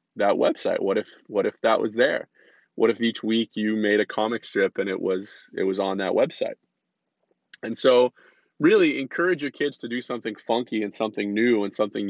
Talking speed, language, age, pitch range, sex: 205 wpm, English, 20-39, 100-125 Hz, male